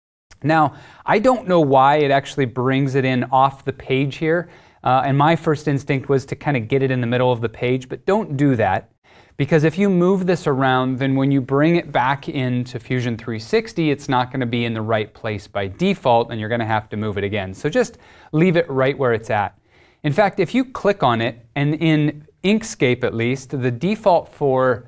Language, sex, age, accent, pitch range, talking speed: English, male, 30-49, American, 120-165 Hz, 225 wpm